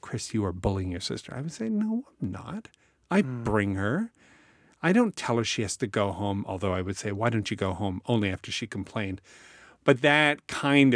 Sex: male